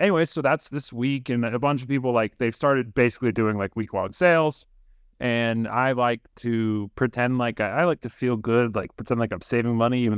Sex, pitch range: male, 105-135 Hz